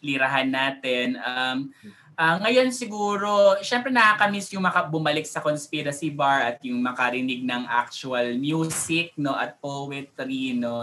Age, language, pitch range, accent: 20-39, Filipino, 130-180 Hz, native